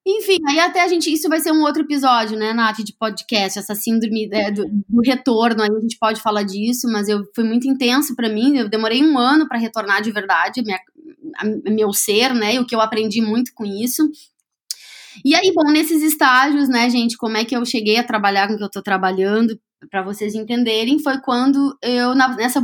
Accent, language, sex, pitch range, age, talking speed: Brazilian, Portuguese, female, 210-265 Hz, 20-39, 215 wpm